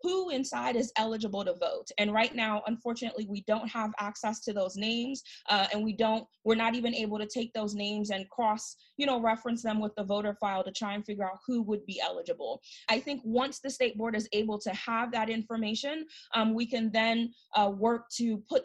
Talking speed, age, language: 215 wpm, 20-39, English